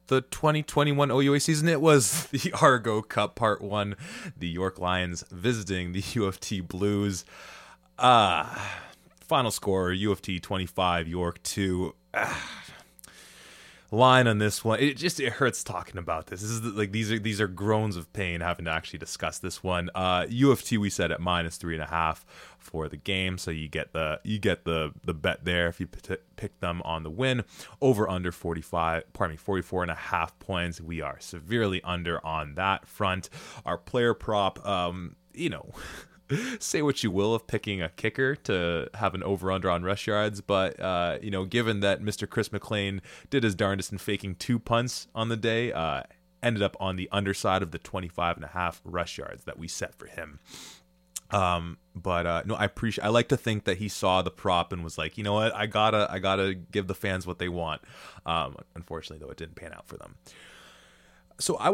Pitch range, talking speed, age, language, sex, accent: 90-110 Hz, 195 wpm, 20-39, English, male, American